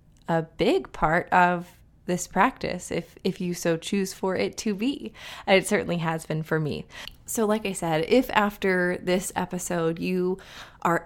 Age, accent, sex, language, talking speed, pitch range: 20-39, American, female, English, 170 wpm, 175-215 Hz